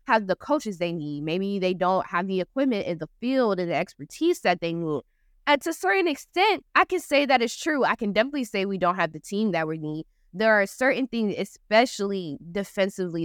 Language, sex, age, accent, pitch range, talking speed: English, female, 20-39, American, 165-205 Hz, 220 wpm